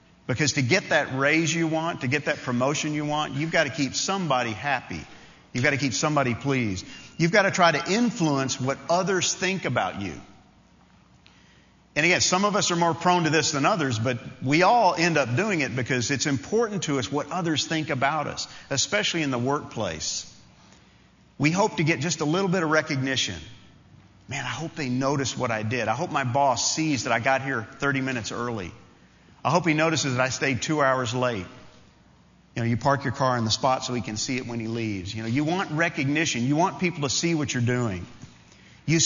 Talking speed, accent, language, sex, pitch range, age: 215 wpm, American, English, male, 125-165 Hz, 50-69